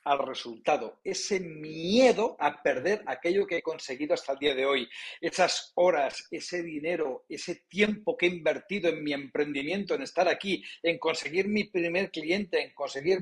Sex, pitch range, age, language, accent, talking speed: male, 150-210 Hz, 50-69, Spanish, Spanish, 170 wpm